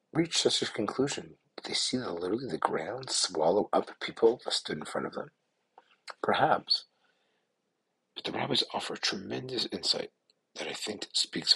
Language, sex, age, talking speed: English, male, 50-69, 155 wpm